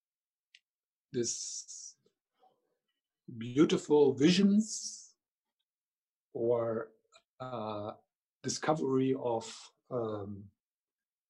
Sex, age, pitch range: male, 50-69, 120-180 Hz